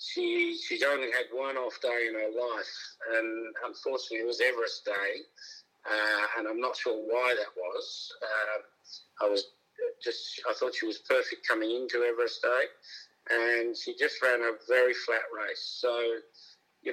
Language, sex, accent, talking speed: English, male, Australian, 165 wpm